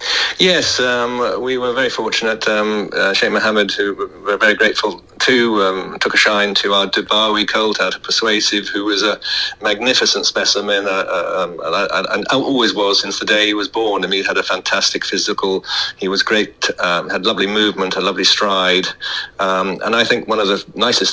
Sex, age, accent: male, 40-59, British